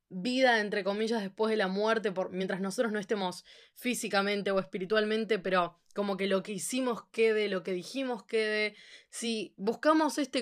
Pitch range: 195-245 Hz